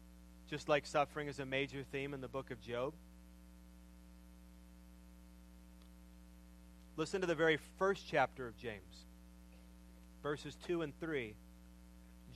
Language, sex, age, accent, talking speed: English, male, 40-59, American, 115 wpm